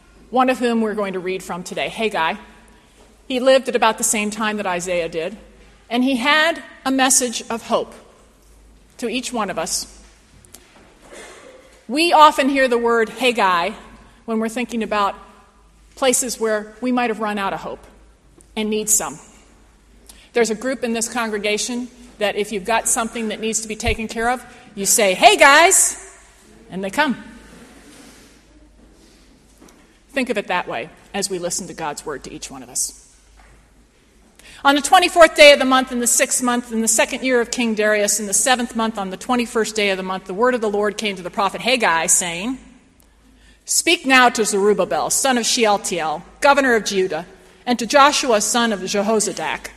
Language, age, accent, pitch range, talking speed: English, 40-59, American, 210-265 Hz, 185 wpm